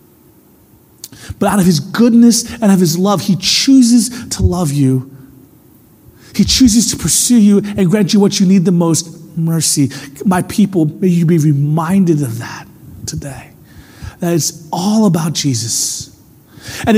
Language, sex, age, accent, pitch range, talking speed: English, male, 30-49, American, 170-235 Hz, 150 wpm